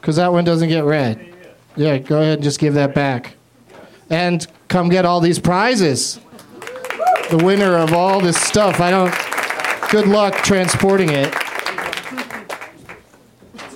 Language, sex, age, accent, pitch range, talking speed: English, male, 30-49, American, 140-190 Hz, 145 wpm